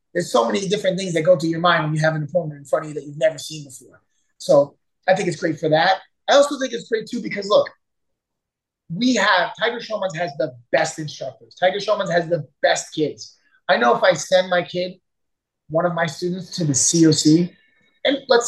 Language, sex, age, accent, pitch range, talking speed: English, male, 30-49, American, 155-190 Hz, 225 wpm